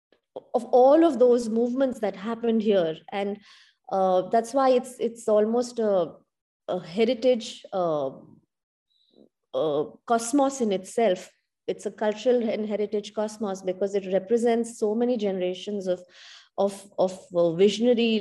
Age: 30-49